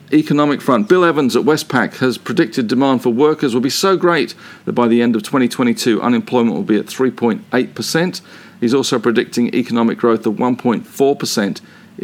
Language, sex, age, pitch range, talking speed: English, male, 50-69, 115-145 Hz, 160 wpm